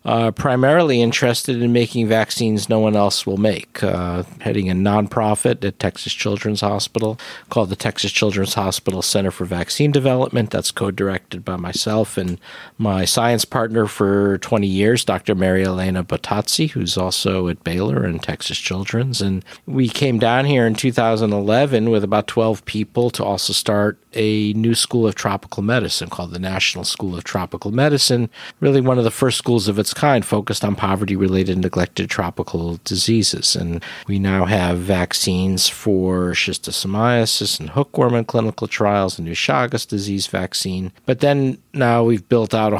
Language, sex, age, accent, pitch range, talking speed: English, male, 50-69, American, 95-115 Hz, 165 wpm